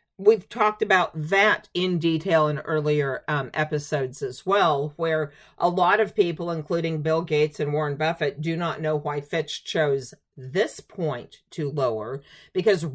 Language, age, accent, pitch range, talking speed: English, 50-69, American, 160-225 Hz, 160 wpm